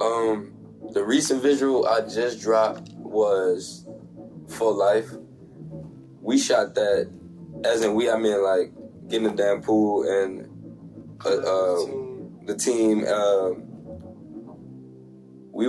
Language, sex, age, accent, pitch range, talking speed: English, male, 20-39, American, 95-135 Hz, 115 wpm